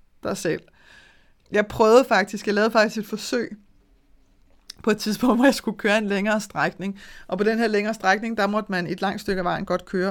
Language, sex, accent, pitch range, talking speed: Danish, female, native, 195-245 Hz, 210 wpm